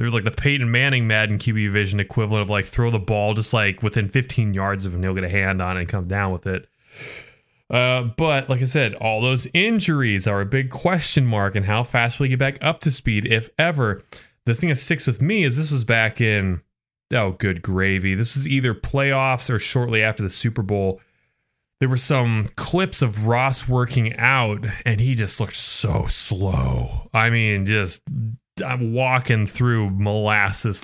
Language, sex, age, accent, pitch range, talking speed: English, male, 20-39, American, 100-135 Hz, 195 wpm